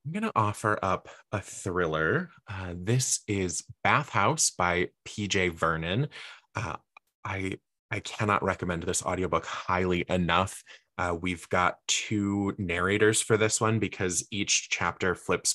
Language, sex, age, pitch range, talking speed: English, male, 20-39, 90-115 Hz, 130 wpm